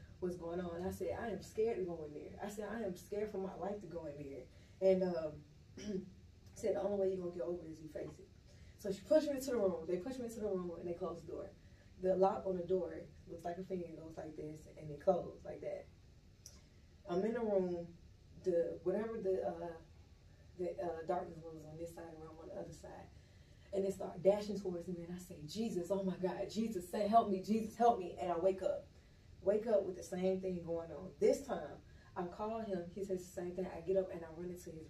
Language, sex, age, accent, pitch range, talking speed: English, female, 20-39, American, 170-200 Hz, 250 wpm